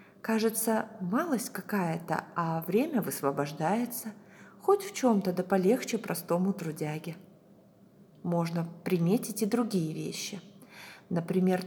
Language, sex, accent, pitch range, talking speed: Russian, female, native, 175-220 Hz, 100 wpm